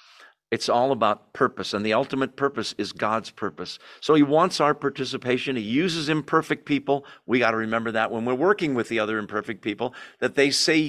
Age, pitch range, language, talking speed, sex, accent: 50-69, 115-150 Hz, English, 195 wpm, male, American